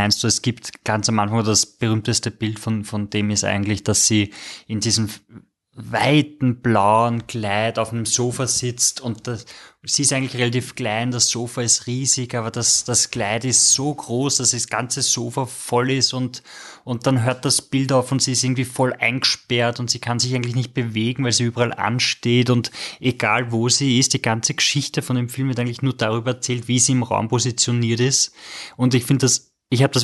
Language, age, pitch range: German, 20-39, 115-130 Hz